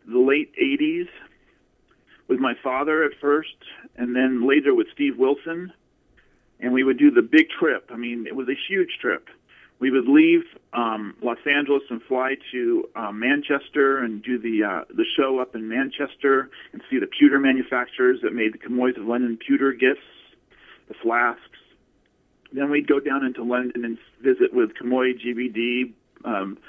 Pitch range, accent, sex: 120-150 Hz, American, male